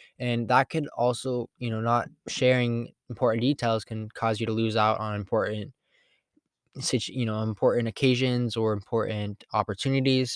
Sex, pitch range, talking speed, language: male, 110-125 Hz, 145 wpm, English